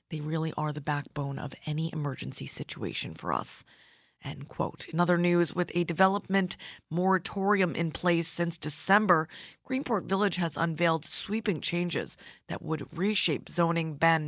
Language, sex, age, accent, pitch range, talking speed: English, female, 20-39, American, 155-185 Hz, 145 wpm